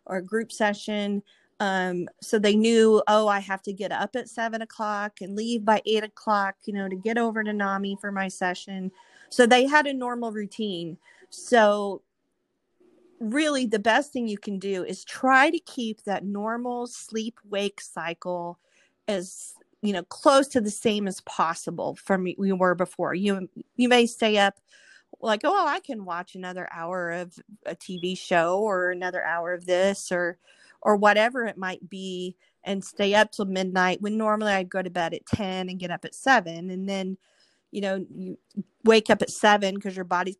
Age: 40-59